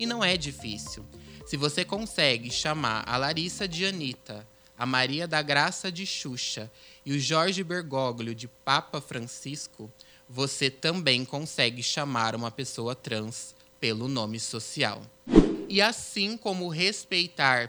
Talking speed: 130 wpm